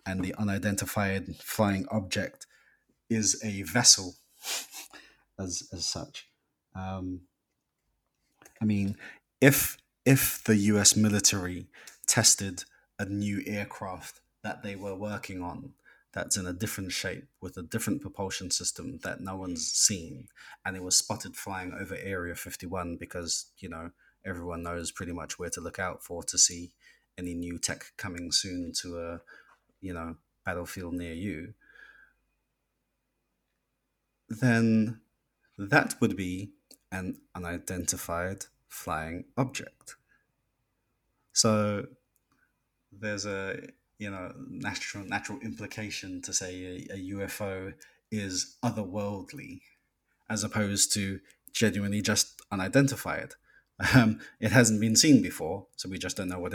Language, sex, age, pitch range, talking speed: English, male, 30-49, 90-105 Hz, 125 wpm